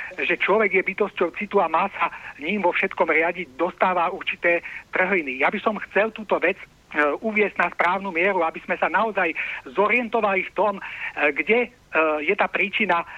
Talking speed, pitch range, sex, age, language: 165 wpm, 170-220 Hz, male, 60-79, Slovak